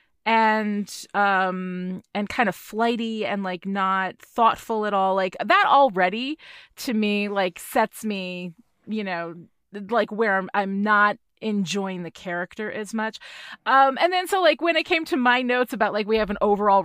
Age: 30-49